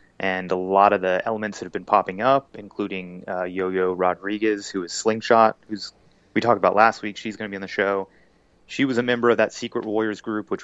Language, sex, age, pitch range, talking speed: English, male, 30-49, 95-110 Hz, 230 wpm